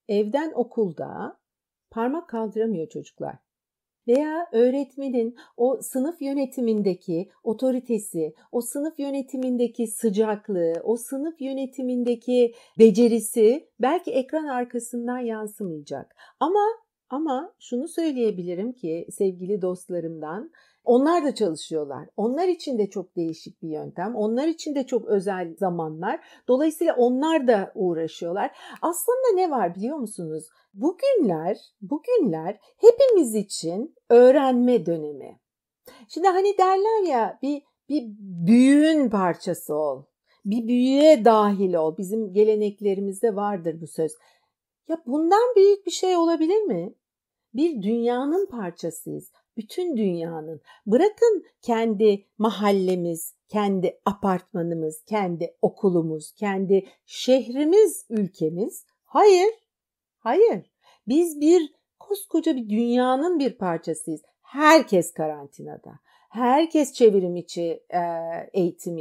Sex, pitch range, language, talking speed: female, 190-295 Hz, Turkish, 100 wpm